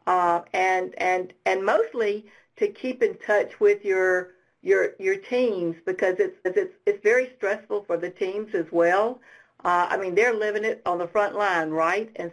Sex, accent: female, American